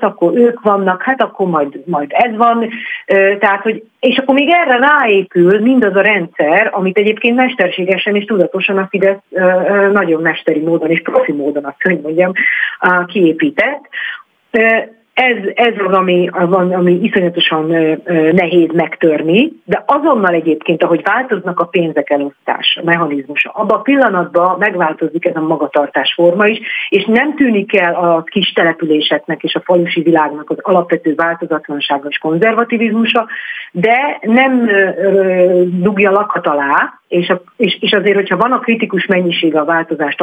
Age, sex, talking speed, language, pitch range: 40-59, female, 145 wpm, Hungarian, 165-215 Hz